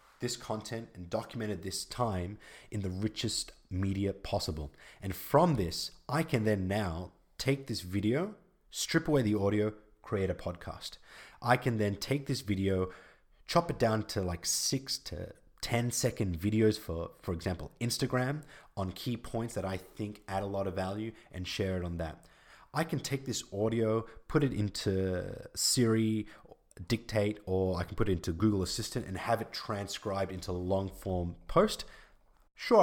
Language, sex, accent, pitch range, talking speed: English, male, Australian, 95-115 Hz, 165 wpm